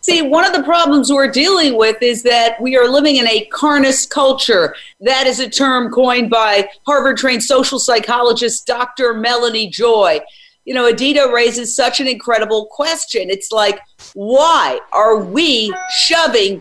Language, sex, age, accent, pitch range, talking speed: English, female, 50-69, American, 235-290 Hz, 155 wpm